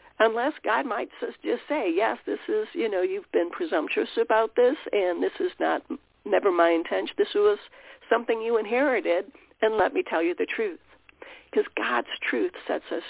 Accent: American